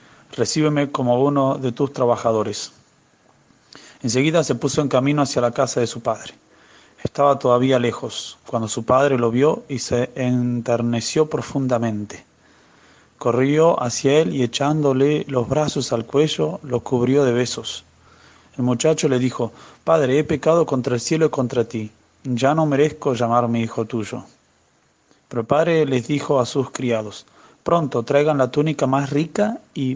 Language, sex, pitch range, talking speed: Spanish, male, 120-150 Hz, 150 wpm